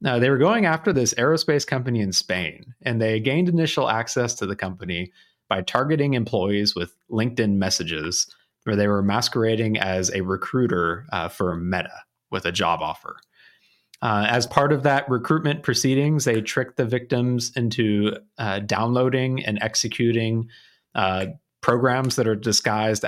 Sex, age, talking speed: male, 30-49, 155 wpm